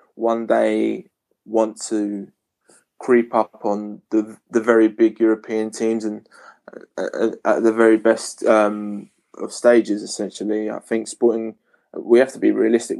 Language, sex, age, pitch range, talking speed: English, male, 20-39, 110-120 Hz, 145 wpm